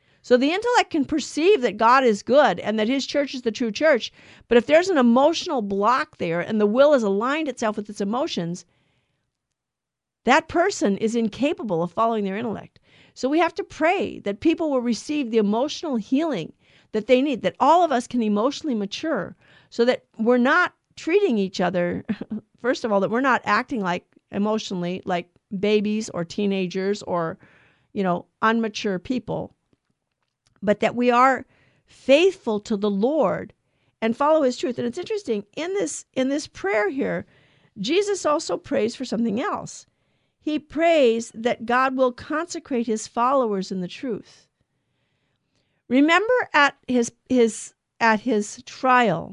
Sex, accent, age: female, American, 50-69